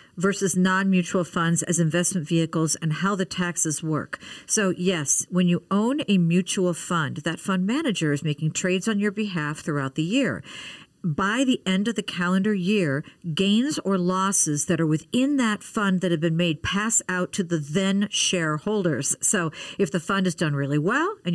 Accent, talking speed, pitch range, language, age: American, 185 wpm, 165-205 Hz, English, 50-69